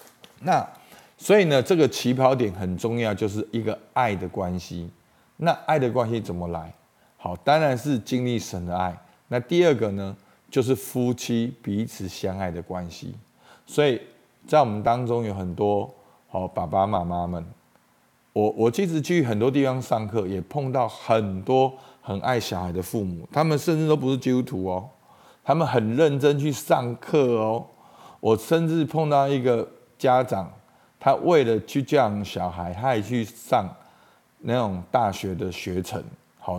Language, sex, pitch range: Chinese, male, 95-130 Hz